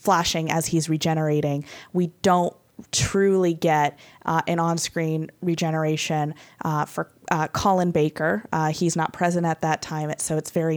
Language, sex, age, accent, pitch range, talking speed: English, female, 20-39, American, 160-210 Hz, 155 wpm